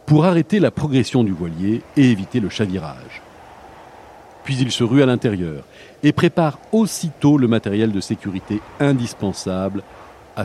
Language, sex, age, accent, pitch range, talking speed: French, male, 50-69, French, 105-150 Hz, 145 wpm